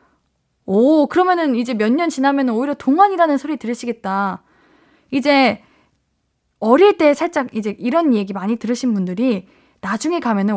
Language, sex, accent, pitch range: Korean, female, native, 210-305 Hz